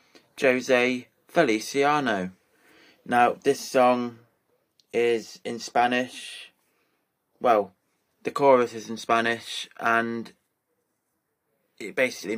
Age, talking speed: 20-39, 80 wpm